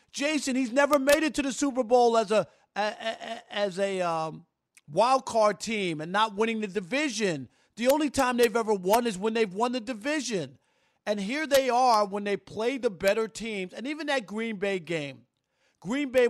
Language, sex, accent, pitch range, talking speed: English, male, American, 185-240 Hz, 200 wpm